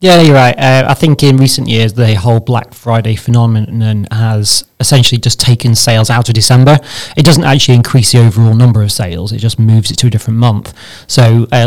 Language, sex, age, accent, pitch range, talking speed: English, male, 30-49, British, 115-125 Hz, 210 wpm